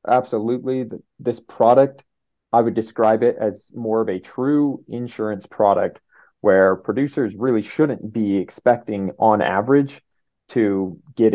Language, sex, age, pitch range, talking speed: English, male, 30-49, 100-115 Hz, 125 wpm